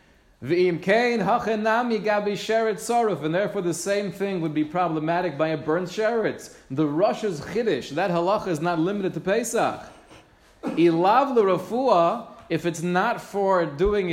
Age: 30-49